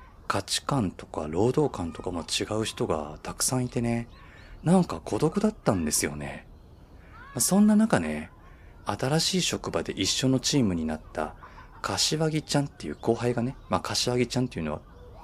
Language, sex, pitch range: Japanese, male, 85-125 Hz